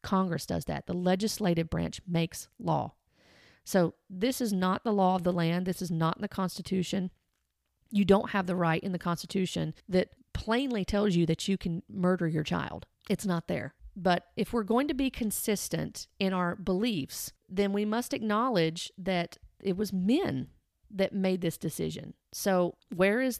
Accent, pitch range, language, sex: American, 180-210 Hz, English, female